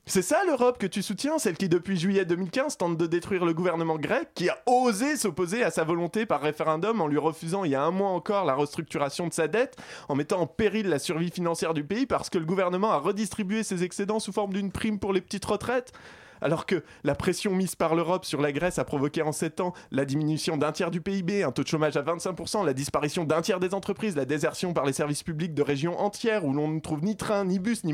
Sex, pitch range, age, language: male, 165-205 Hz, 20-39, French